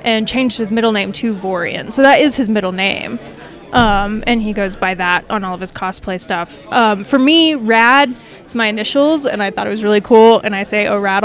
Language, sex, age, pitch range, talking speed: English, female, 20-39, 205-245 Hz, 235 wpm